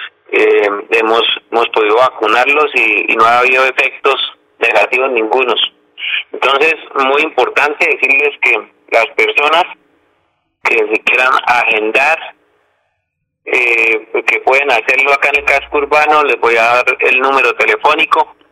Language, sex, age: Spanish, male, 40-59